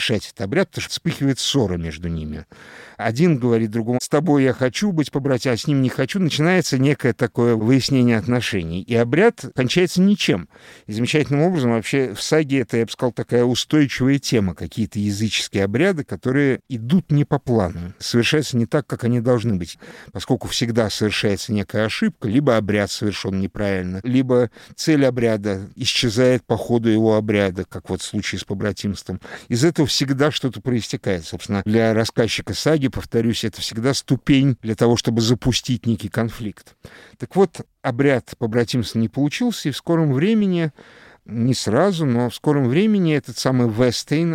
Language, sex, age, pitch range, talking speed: Russian, male, 50-69, 105-140 Hz, 160 wpm